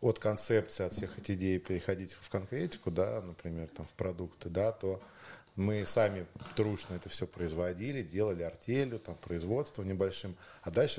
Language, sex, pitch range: Russian, male, 90-115 Hz